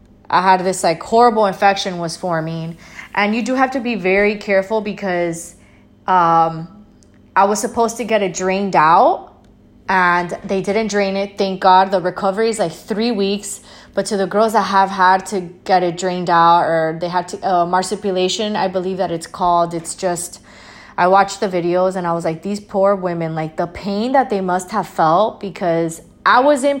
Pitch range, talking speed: 185-235 Hz, 195 wpm